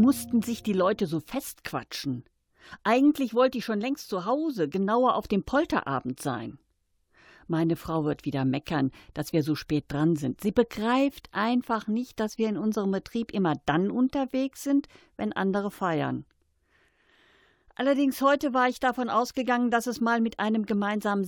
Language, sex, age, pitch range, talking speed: German, female, 50-69, 160-235 Hz, 160 wpm